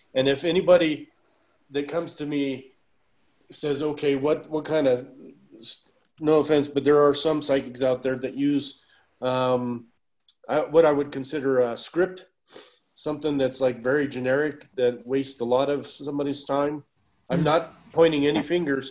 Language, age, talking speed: English, 40-59, 155 wpm